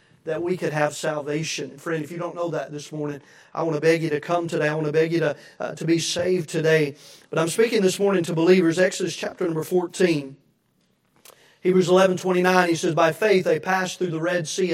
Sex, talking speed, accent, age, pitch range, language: male, 230 wpm, American, 40-59, 155-185 Hz, English